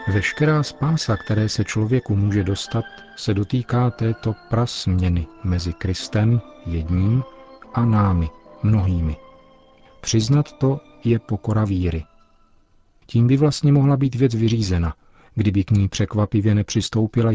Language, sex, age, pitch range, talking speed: Czech, male, 40-59, 95-115 Hz, 120 wpm